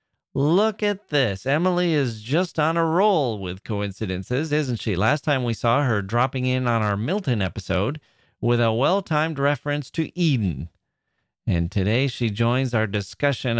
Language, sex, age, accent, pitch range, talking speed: English, male, 30-49, American, 105-145 Hz, 160 wpm